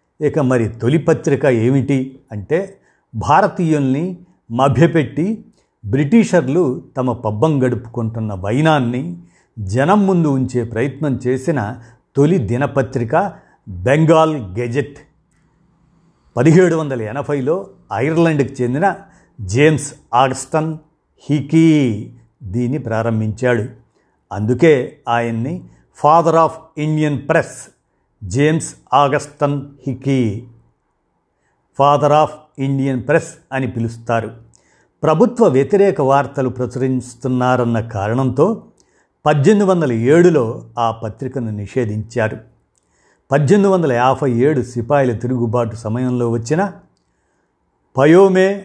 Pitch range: 120-155 Hz